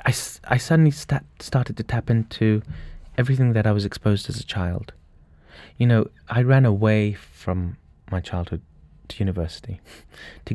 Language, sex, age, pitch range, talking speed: English, male, 30-49, 95-120 Hz, 160 wpm